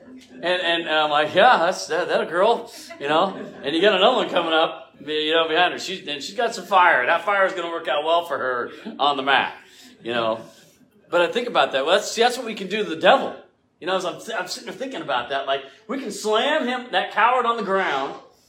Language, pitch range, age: English, 170-235 Hz, 40-59